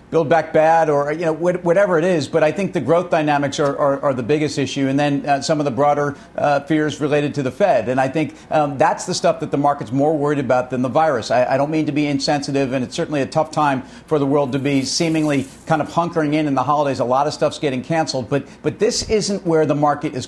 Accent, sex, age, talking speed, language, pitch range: American, male, 50-69, 265 wpm, English, 140-160 Hz